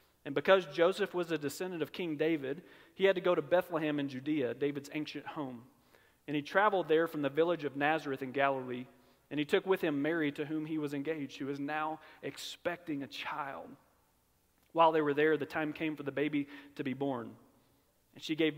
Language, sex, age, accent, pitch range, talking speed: English, male, 40-59, American, 140-175 Hz, 205 wpm